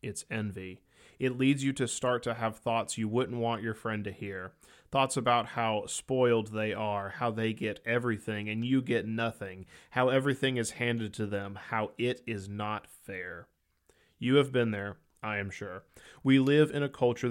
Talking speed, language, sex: 185 wpm, English, male